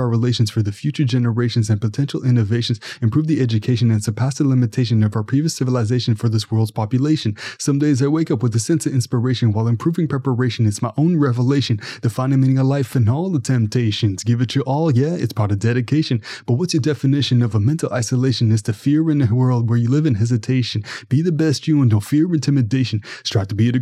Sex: male